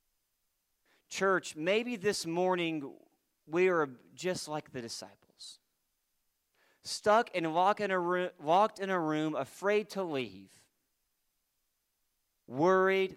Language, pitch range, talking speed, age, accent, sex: English, 140-190 Hz, 90 wpm, 40-59, American, male